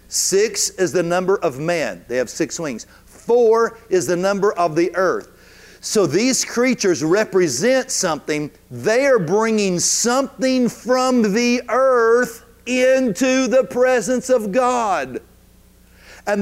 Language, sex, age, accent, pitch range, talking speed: English, male, 50-69, American, 170-235 Hz, 130 wpm